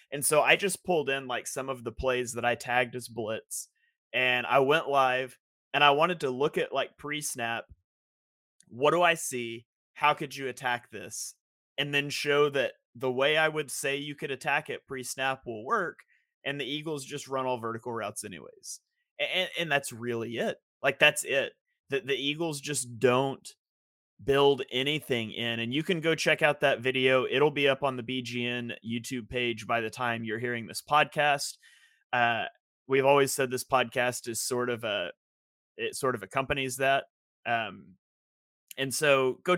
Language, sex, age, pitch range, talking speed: English, male, 30-49, 120-145 Hz, 180 wpm